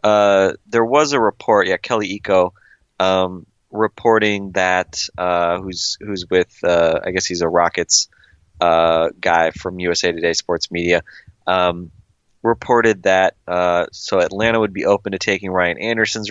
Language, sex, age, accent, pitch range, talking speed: English, male, 20-39, American, 90-105 Hz, 150 wpm